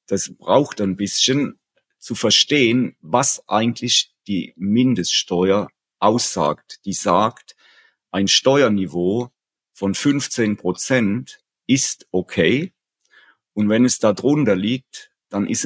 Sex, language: male, German